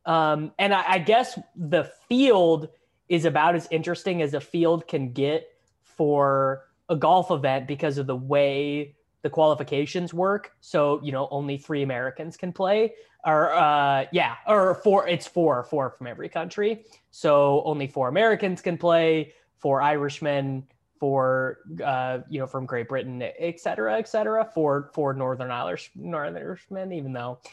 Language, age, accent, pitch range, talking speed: English, 20-39, American, 140-180 Hz, 160 wpm